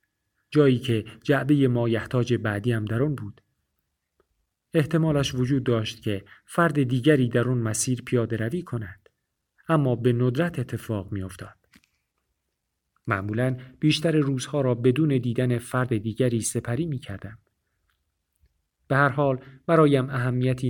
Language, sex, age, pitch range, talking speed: Persian, male, 50-69, 105-130 Hz, 125 wpm